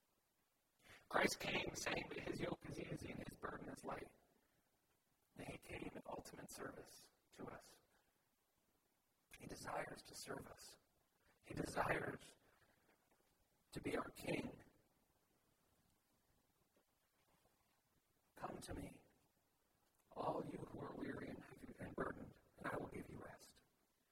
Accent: American